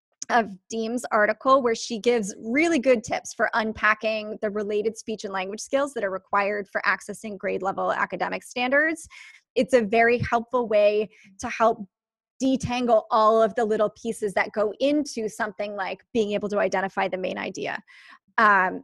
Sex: female